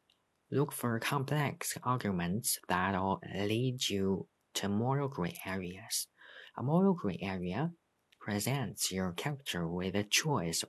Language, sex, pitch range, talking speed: English, male, 95-135 Hz, 125 wpm